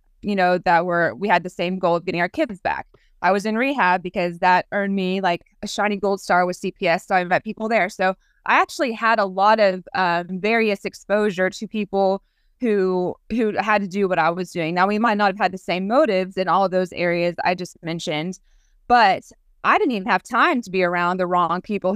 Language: English